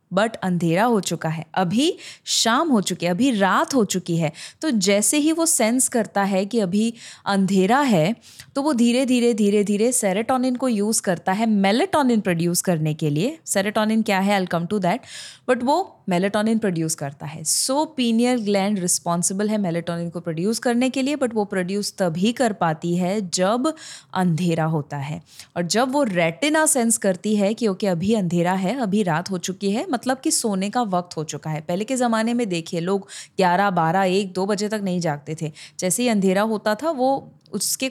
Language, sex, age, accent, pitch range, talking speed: Hindi, female, 20-39, native, 180-230 Hz, 195 wpm